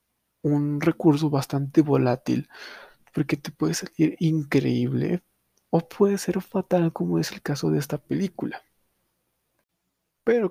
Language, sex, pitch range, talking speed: Spanish, male, 130-170 Hz, 120 wpm